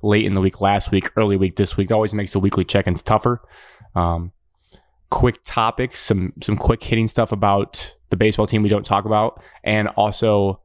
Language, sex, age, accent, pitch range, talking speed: English, male, 20-39, American, 100-120 Hz, 195 wpm